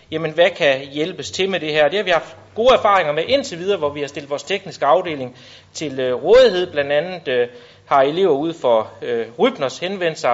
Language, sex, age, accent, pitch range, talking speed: Danish, male, 30-49, native, 130-180 Hz, 205 wpm